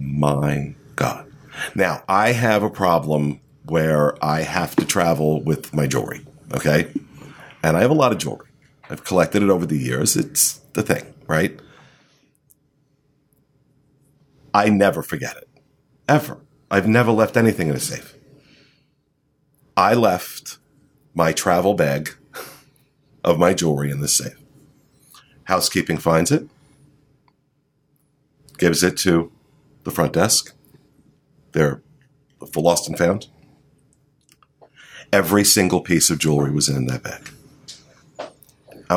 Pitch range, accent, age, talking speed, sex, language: 90-145 Hz, American, 50-69, 120 wpm, male, English